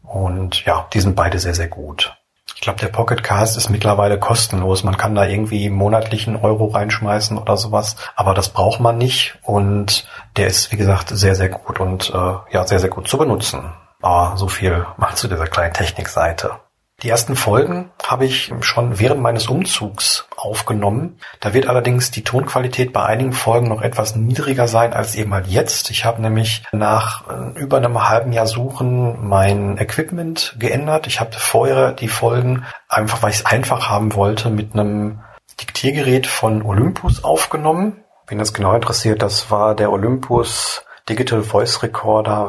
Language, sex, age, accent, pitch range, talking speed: German, male, 40-59, German, 100-120 Hz, 170 wpm